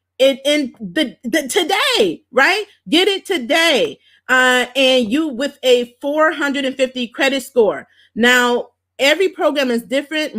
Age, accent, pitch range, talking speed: 30-49, American, 220-275 Hz, 120 wpm